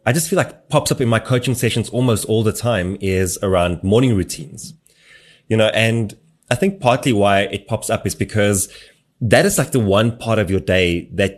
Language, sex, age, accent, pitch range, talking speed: English, male, 20-39, German, 100-125 Hz, 210 wpm